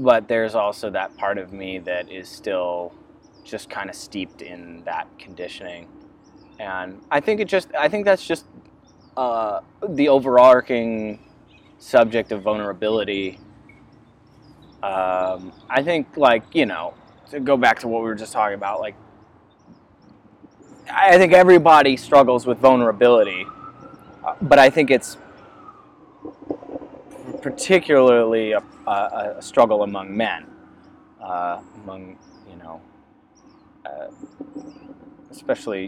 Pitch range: 95-145 Hz